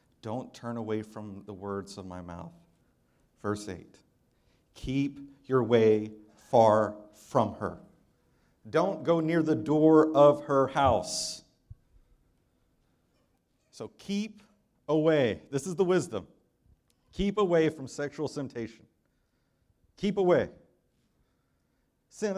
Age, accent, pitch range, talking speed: 50-69, American, 110-160 Hz, 105 wpm